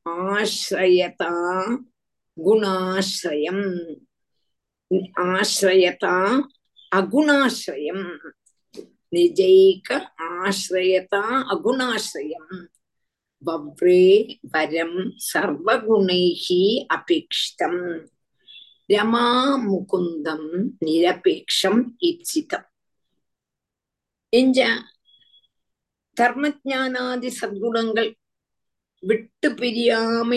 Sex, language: female, Tamil